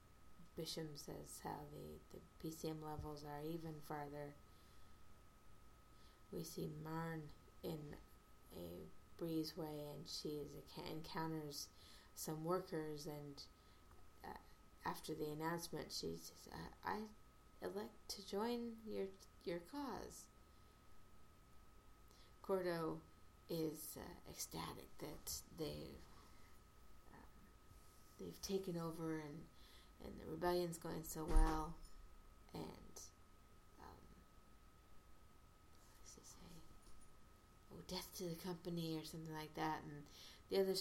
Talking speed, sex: 105 wpm, female